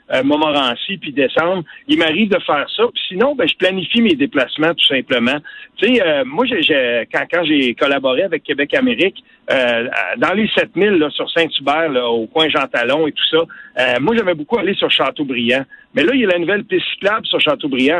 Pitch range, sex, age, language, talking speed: 155-250 Hz, male, 50-69, French, 215 wpm